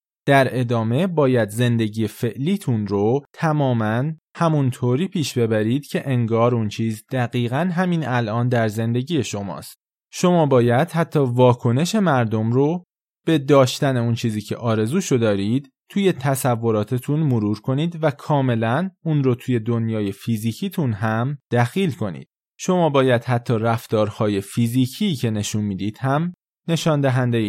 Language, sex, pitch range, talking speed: Persian, male, 110-145 Hz, 125 wpm